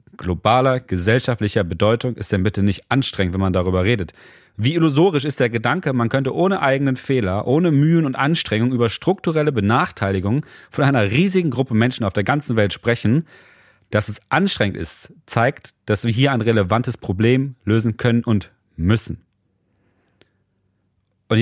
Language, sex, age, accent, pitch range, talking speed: German, male, 30-49, German, 100-130 Hz, 155 wpm